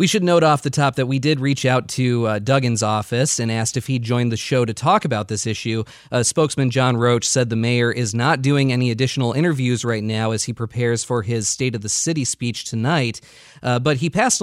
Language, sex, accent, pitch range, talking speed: English, male, American, 115-145 Hz, 240 wpm